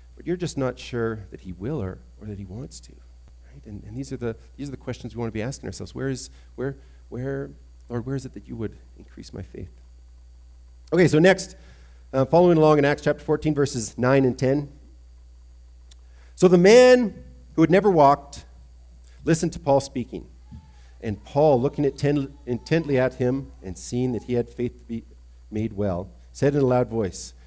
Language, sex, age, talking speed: English, male, 40-59, 200 wpm